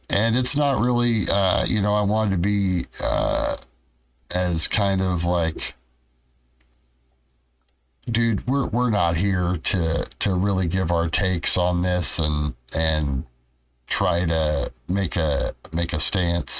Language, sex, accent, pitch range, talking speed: English, male, American, 75-95 Hz, 135 wpm